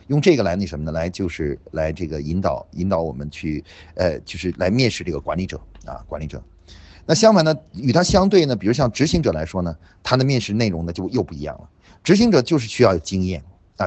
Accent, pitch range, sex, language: native, 85-125 Hz, male, Chinese